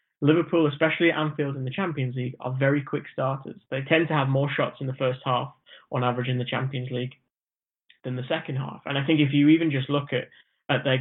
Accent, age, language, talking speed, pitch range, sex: British, 30-49, English, 230 wpm, 130-155 Hz, male